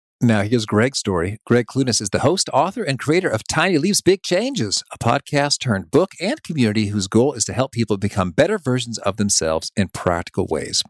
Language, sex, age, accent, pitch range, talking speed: English, male, 50-69, American, 100-150 Hz, 200 wpm